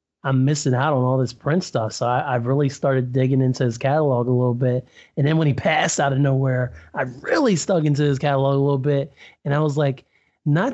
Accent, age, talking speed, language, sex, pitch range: American, 30-49, 230 wpm, English, male, 125-140 Hz